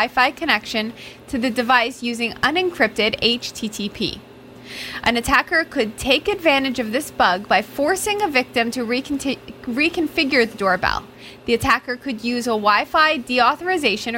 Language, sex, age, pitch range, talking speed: English, female, 20-39, 230-290 Hz, 130 wpm